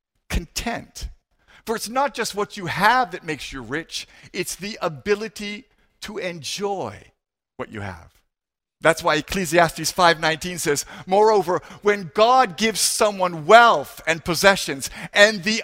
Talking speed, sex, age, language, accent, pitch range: 135 wpm, male, 50-69, English, American, 160-220 Hz